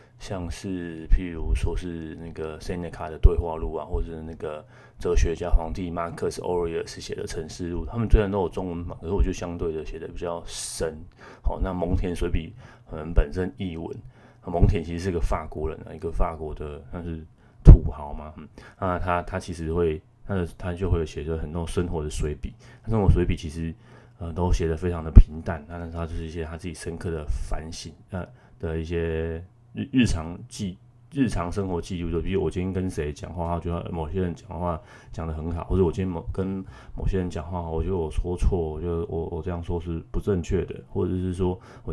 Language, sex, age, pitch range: Chinese, male, 20-39, 80-95 Hz